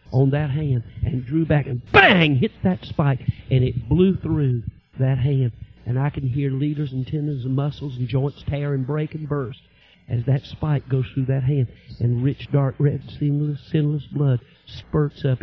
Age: 50-69